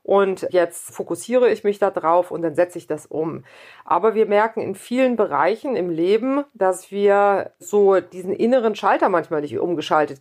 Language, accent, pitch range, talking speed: English, German, 170-225 Hz, 175 wpm